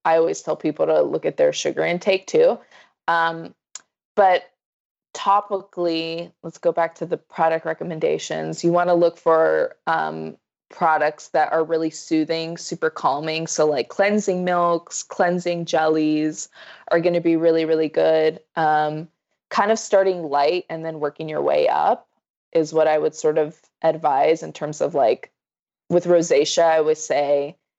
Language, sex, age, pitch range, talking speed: English, female, 20-39, 155-175 Hz, 160 wpm